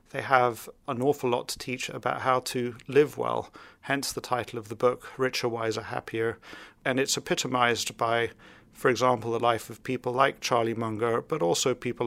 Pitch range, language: 115-135 Hz, English